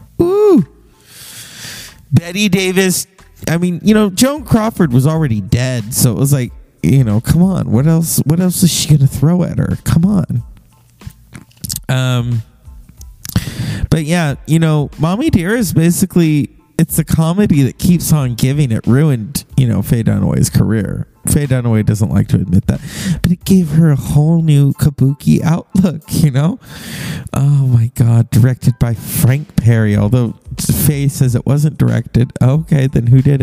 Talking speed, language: 160 wpm, English